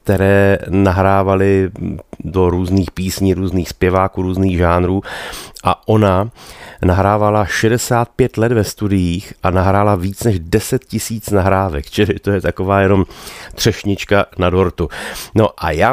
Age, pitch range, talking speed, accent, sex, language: 30-49, 90-105 Hz, 130 wpm, native, male, Czech